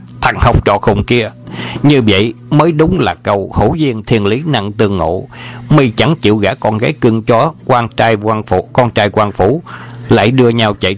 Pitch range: 95-120 Hz